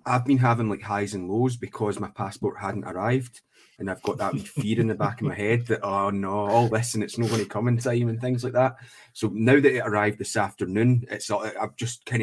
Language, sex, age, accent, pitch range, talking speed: English, male, 30-49, British, 95-120 Hz, 250 wpm